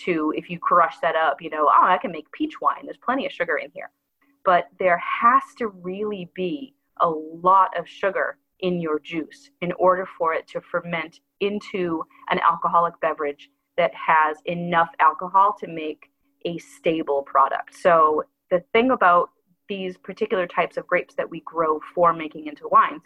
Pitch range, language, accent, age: 165-220 Hz, English, American, 30-49